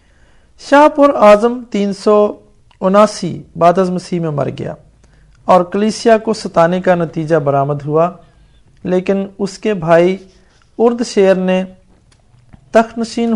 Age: 50-69